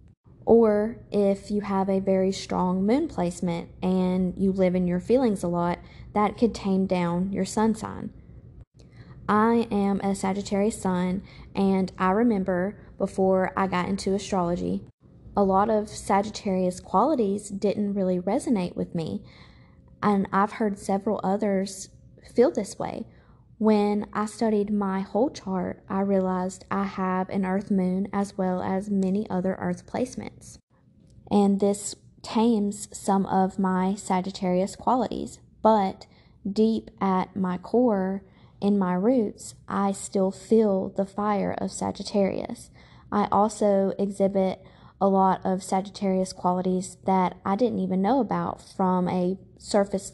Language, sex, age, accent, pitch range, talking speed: English, female, 20-39, American, 185-210 Hz, 140 wpm